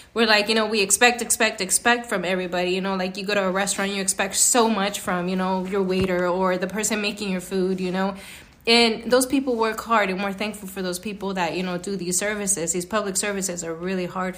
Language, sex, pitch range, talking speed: English, female, 185-220 Hz, 240 wpm